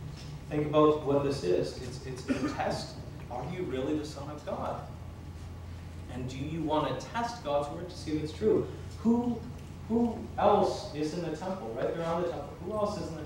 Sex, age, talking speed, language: male, 30-49, 210 wpm, English